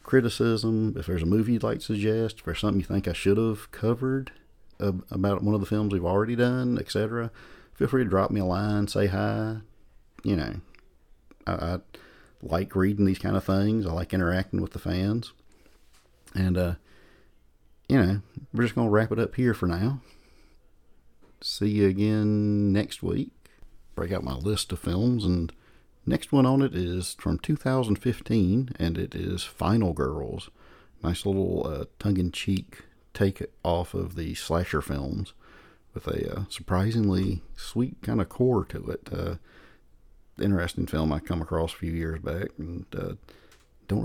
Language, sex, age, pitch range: English, male, 40-59, 90-110 Hz